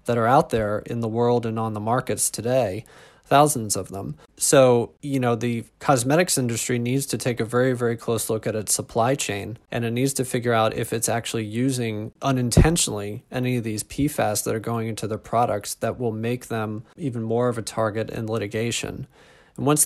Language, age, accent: English, 20-39, American